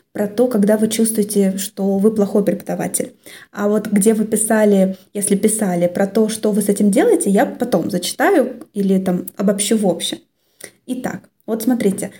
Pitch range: 200-245 Hz